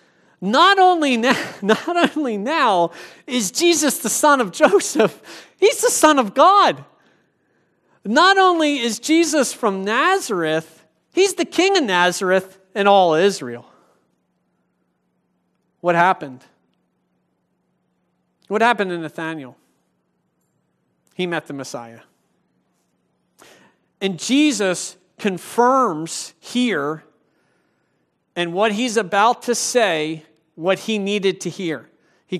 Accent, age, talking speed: American, 40-59, 100 wpm